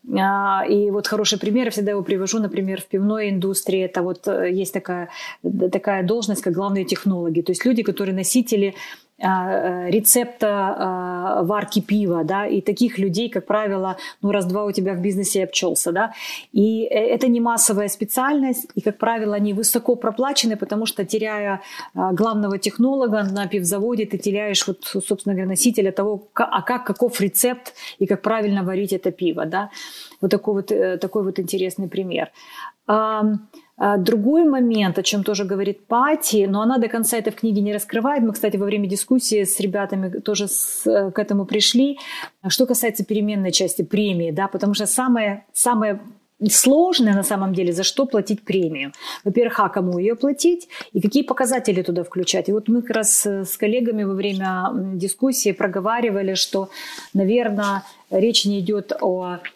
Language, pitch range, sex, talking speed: Ukrainian, 195-225 Hz, female, 160 wpm